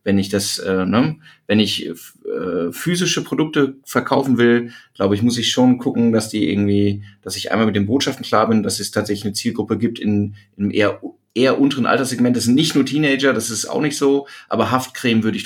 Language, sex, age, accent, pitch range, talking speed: German, male, 30-49, German, 105-130 Hz, 215 wpm